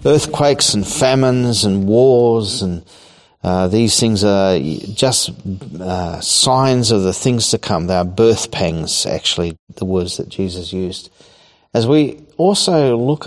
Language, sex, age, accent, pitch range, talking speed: English, male, 40-59, Australian, 95-115 Hz, 145 wpm